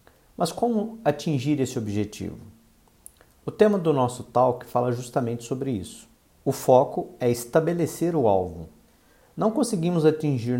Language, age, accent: Portuguese, 50-69, Brazilian